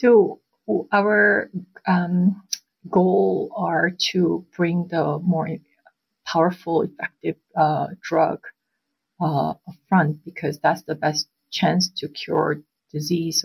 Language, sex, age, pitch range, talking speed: English, female, 50-69, 150-165 Hz, 105 wpm